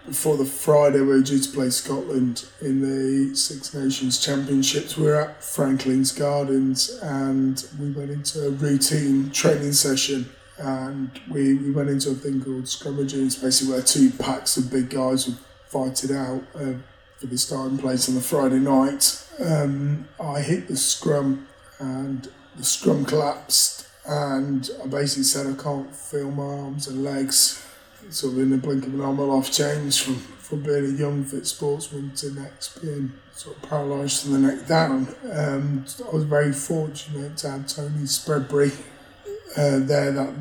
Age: 20-39